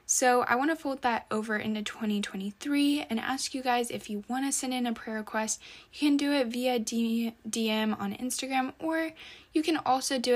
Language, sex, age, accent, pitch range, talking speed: English, female, 10-29, American, 200-255 Hz, 205 wpm